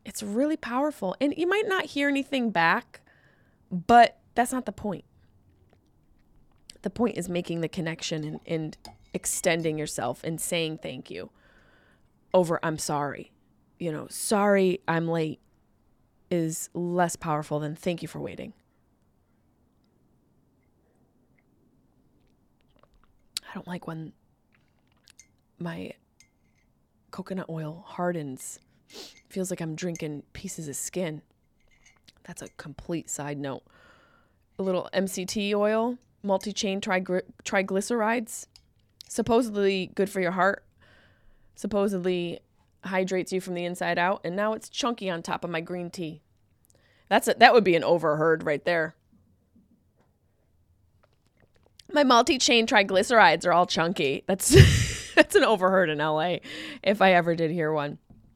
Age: 20-39